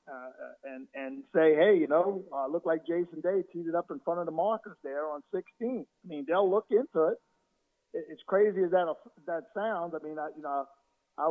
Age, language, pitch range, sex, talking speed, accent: 50-69, English, 145-185 Hz, male, 225 wpm, American